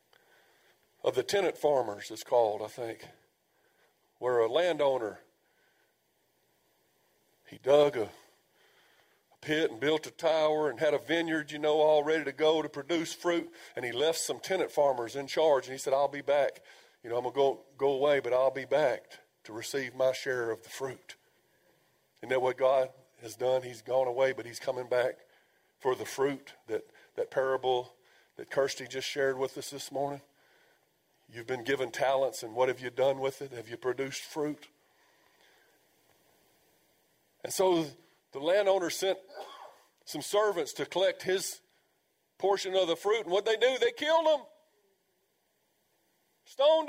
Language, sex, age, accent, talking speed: English, male, 50-69, American, 165 wpm